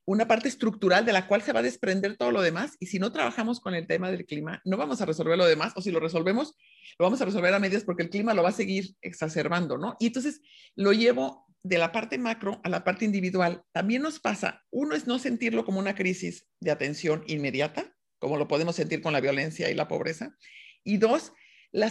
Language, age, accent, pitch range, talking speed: English, 50-69, Mexican, 170-225 Hz, 235 wpm